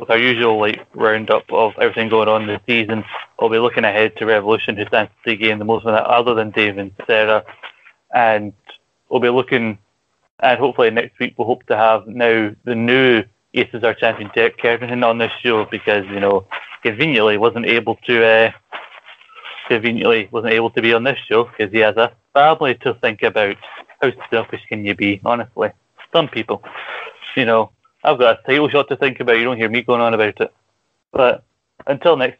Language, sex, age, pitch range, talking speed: English, male, 20-39, 110-120 Hz, 200 wpm